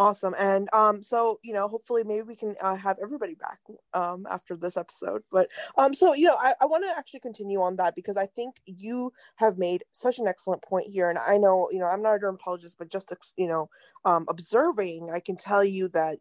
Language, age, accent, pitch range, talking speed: English, 20-39, American, 175-220 Hz, 230 wpm